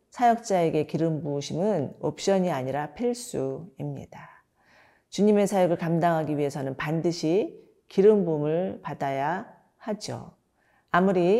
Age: 40-59